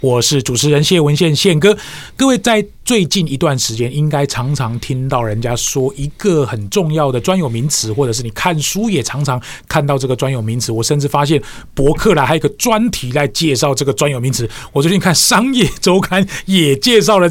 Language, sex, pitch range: Chinese, male, 135-185 Hz